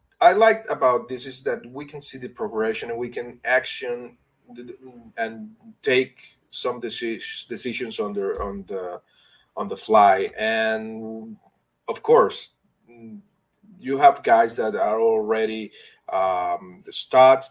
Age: 30-49